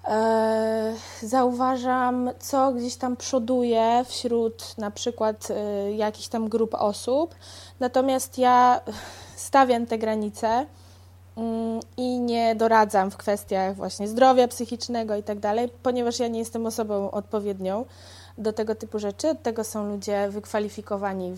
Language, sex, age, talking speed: Polish, female, 20-39, 120 wpm